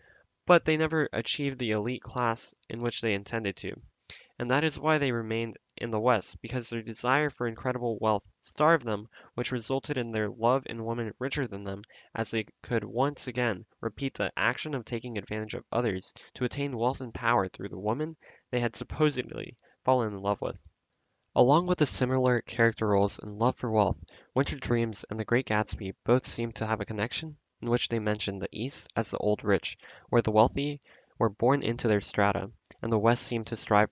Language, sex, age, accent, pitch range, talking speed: English, male, 10-29, American, 105-125 Hz, 200 wpm